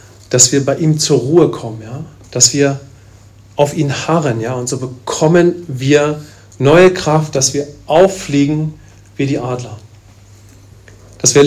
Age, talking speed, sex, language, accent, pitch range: 40-59, 145 wpm, male, English, German, 115-150 Hz